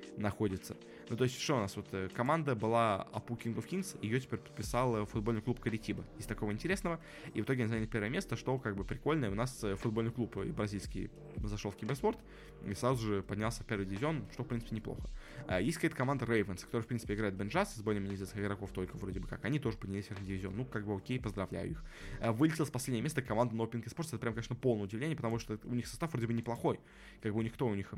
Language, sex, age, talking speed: Russian, male, 20-39, 235 wpm